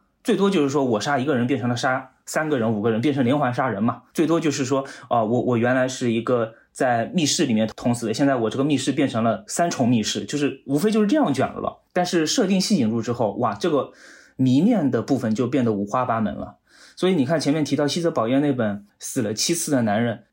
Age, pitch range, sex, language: 20-39, 115-170 Hz, male, Chinese